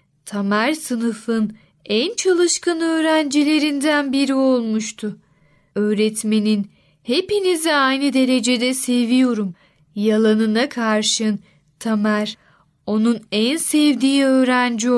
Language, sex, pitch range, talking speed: Turkish, female, 215-270 Hz, 75 wpm